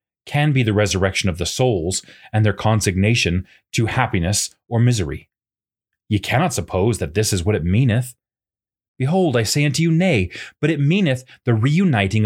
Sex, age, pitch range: male, 30-49, 95-130 Hz